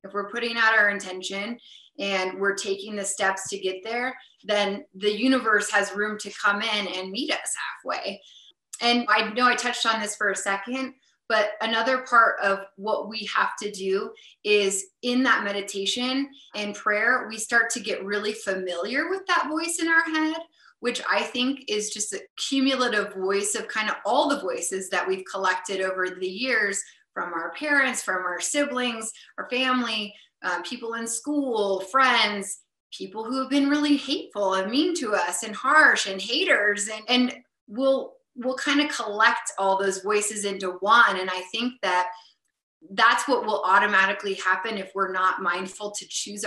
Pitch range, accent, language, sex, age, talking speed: 195-245 Hz, American, English, female, 20-39, 175 wpm